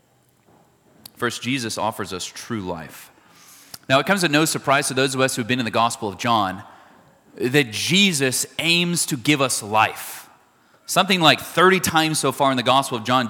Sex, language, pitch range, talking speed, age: male, English, 115-150 Hz, 190 wpm, 30-49